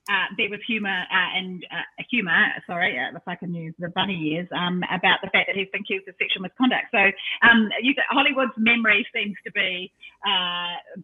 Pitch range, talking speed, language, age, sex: 160-205 Hz, 205 wpm, English, 30-49, female